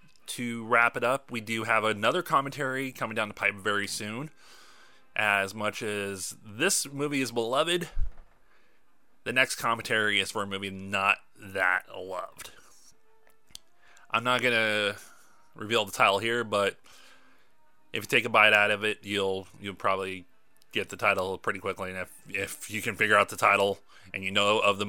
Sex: male